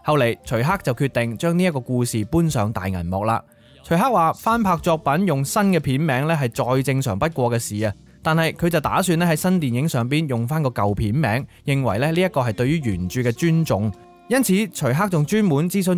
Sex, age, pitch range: male, 20-39, 120-170 Hz